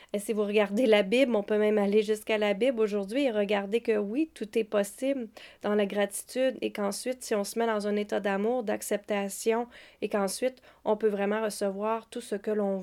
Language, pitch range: French, 210-240 Hz